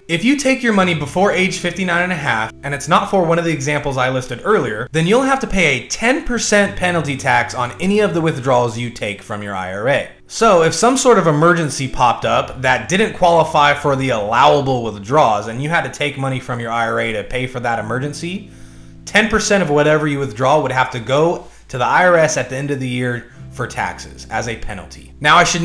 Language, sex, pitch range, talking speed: English, male, 125-180 Hz, 225 wpm